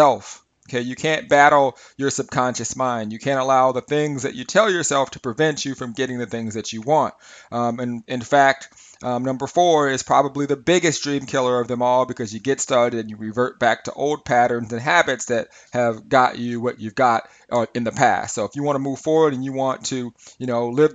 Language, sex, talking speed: English, male, 225 wpm